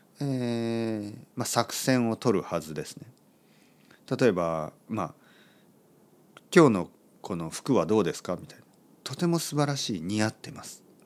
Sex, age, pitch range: male, 40-59, 95-135 Hz